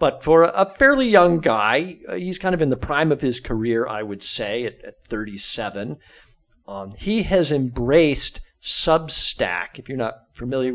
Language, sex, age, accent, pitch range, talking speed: English, male, 50-69, American, 115-145 Hz, 165 wpm